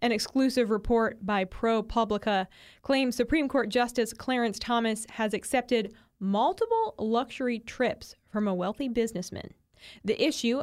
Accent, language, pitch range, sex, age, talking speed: American, English, 210-255 Hz, female, 20-39, 125 wpm